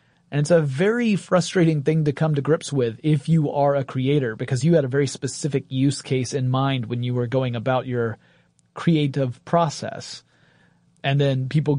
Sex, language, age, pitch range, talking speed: male, English, 30-49, 130-155 Hz, 190 wpm